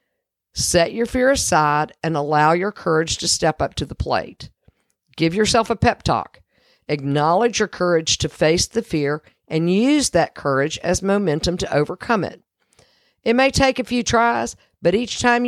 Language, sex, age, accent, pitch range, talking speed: English, female, 50-69, American, 165-235 Hz, 170 wpm